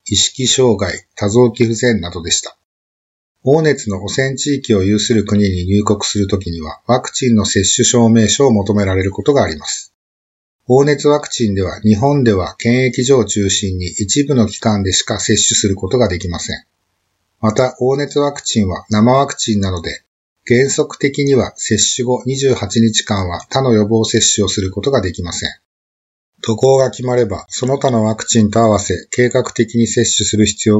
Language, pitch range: Japanese, 100-125 Hz